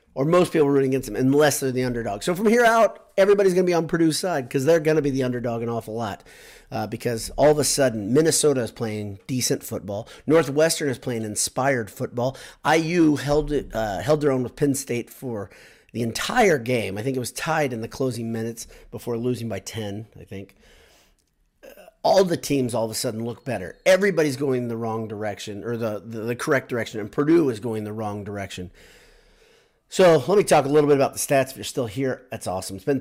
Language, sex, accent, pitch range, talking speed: English, male, American, 105-140 Hz, 225 wpm